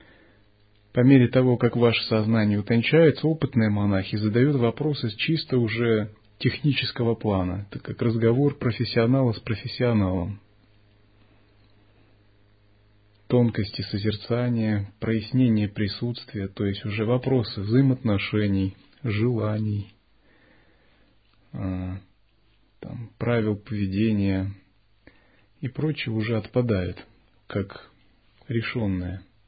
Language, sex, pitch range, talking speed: Russian, male, 100-120 Hz, 80 wpm